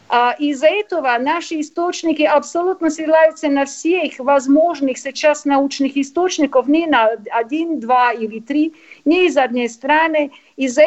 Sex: female